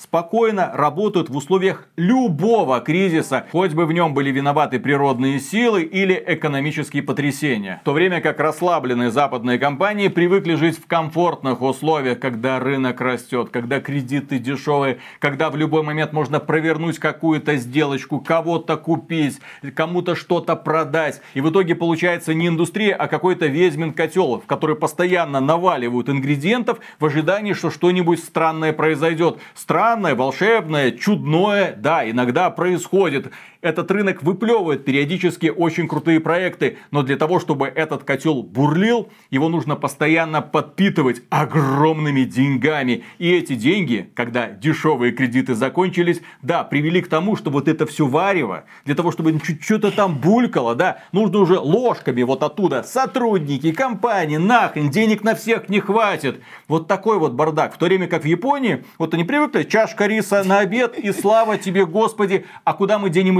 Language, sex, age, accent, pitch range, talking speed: Russian, male, 30-49, native, 145-185 Hz, 150 wpm